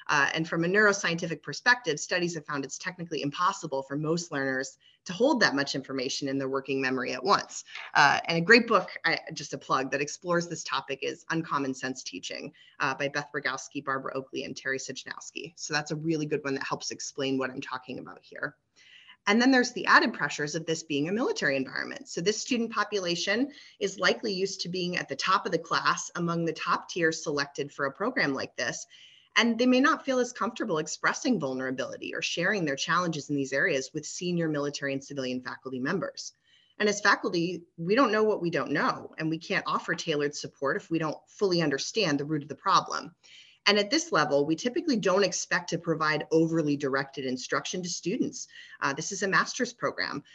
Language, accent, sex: English, American, female